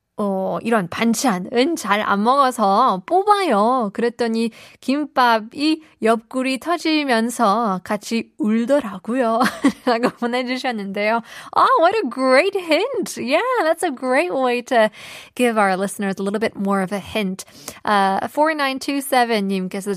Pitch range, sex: 210-295 Hz, female